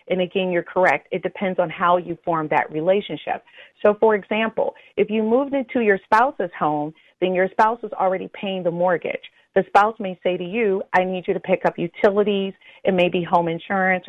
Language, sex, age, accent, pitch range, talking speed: English, female, 30-49, American, 175-210 Hz, 205 wpm